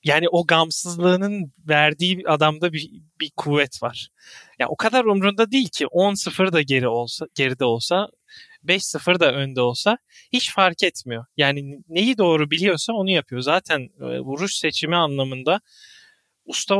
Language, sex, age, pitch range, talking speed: Turkish, male, 30-49, 135-180 Hz, 145 wpm